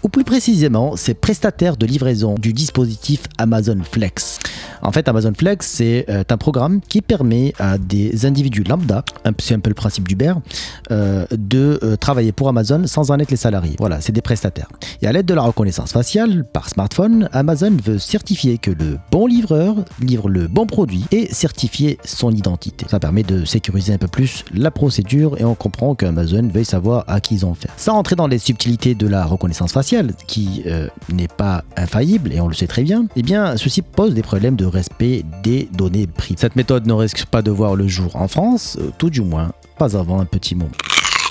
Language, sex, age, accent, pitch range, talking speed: French, male, 30-49, French, 95-135 Hz, 200 wpm